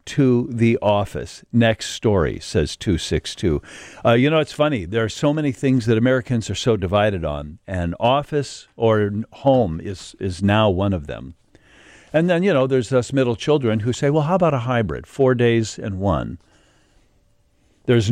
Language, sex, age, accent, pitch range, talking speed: English, male, 50-69, American, 100-135 Hz, 175 wpm